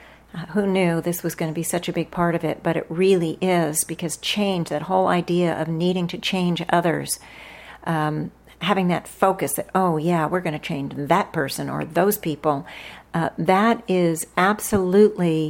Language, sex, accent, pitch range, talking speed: English, female, American, 160-180 Hz, 180 wpm